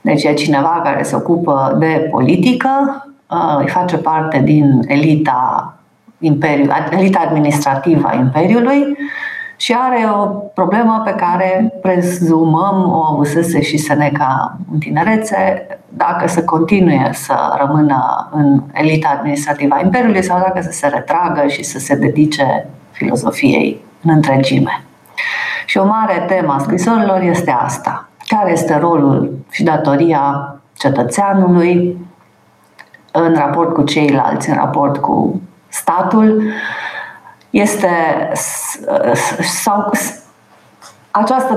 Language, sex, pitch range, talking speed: Romanian, female, 150-195 Hz, 110 wpm